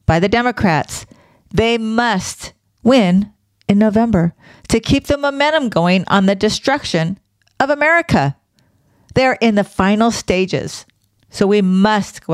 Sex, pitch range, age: female, 160-245 Hz, 50-69